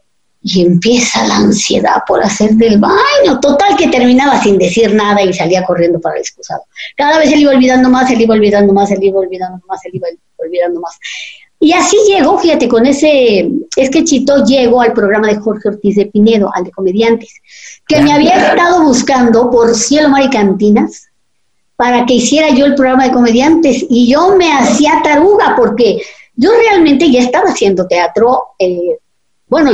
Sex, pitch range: male, 200-300 Hz